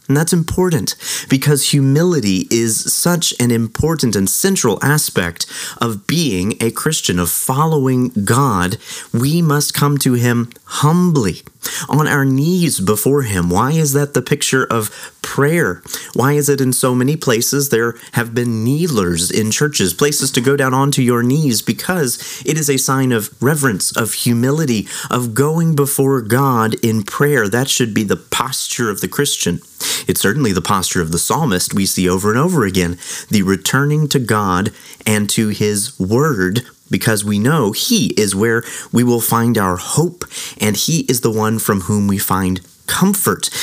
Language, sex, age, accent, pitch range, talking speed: English, male, 30-49, American, 110-145 Hz, 170 wpm